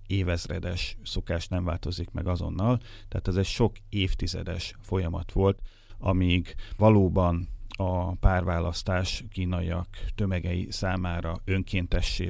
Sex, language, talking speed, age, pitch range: male, Hungarian, 105 wpm, 30-49, 85-100 Hz